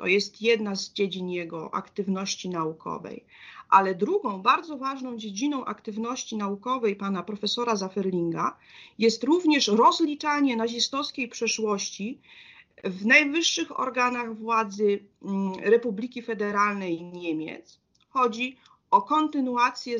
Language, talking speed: Polish, 100 wpm